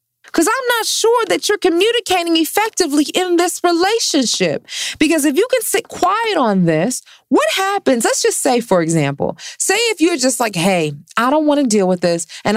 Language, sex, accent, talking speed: English, female, American, 190 wpm